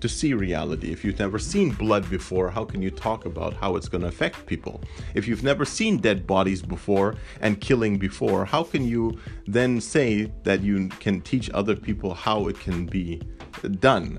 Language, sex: English, male